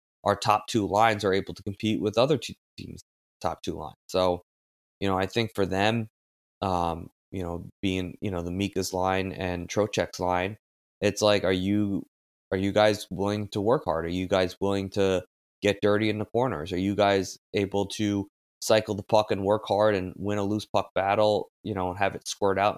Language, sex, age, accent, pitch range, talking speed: English, male, 20-39, American, 90-105 Hz, 205 wpm